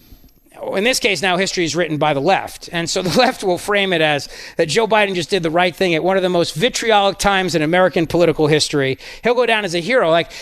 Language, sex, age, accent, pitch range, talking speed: English, male, 40-59, American, 165-195 Hz, 255 wpm